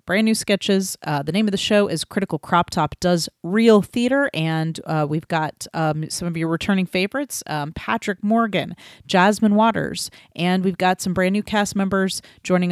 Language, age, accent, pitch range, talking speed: English, 30-49, American, 160-205 Hz, 190 wpm